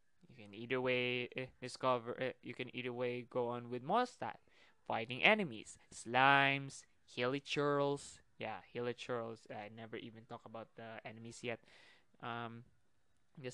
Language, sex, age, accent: Filipino, male, 20-39, native